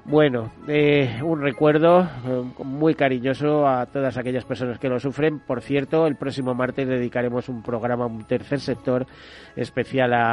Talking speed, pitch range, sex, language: 150 wpm, 120-145 Hz, male, Spanish